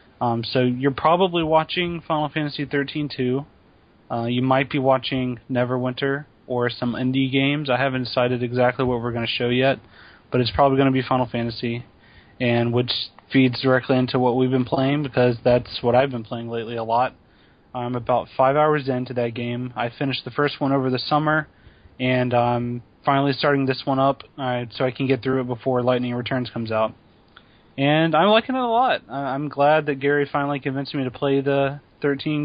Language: English